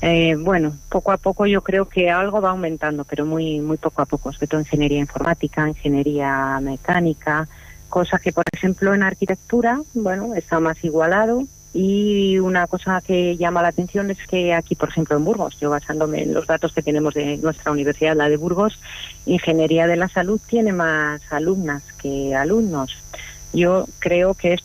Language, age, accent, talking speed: Spanish, 40-59, Spanish, 175 wpm